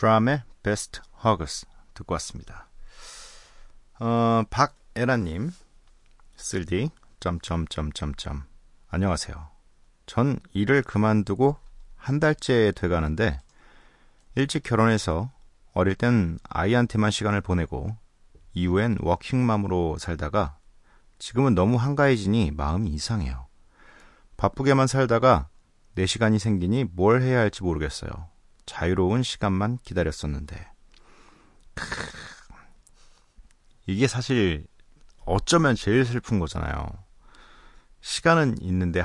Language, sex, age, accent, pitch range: Korean, male, 40-59, native, 85-120 Hz